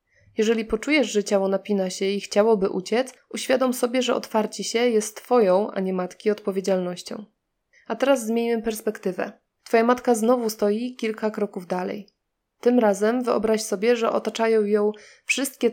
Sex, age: female, 20-39